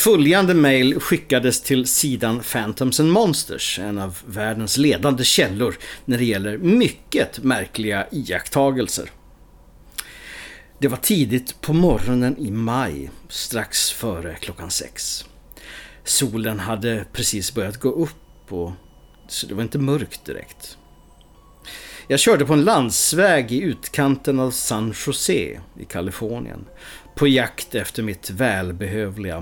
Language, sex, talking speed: English, male, 120 wpm